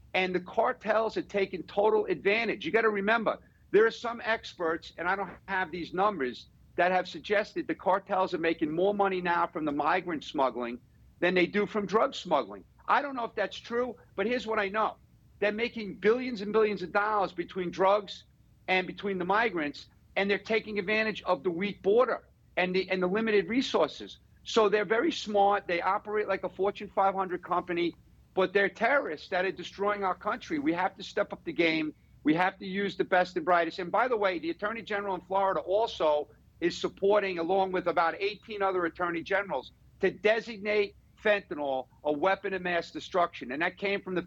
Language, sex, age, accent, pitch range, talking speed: English, male, 50-69, American, 175-210 Hz, 195 wpm